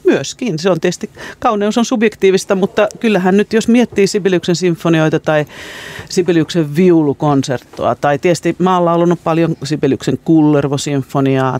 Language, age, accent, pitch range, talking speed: Finnish, 40-59, native, 140-180 Hz, 125 wpm